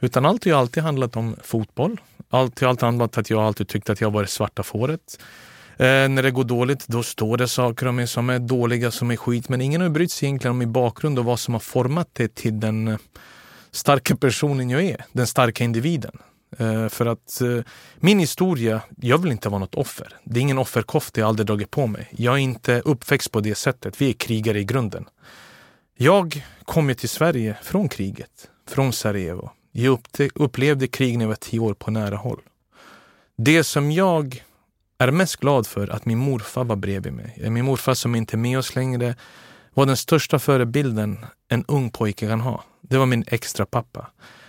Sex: male